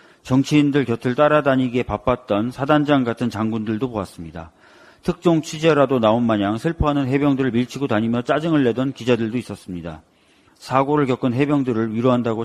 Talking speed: 115 wpm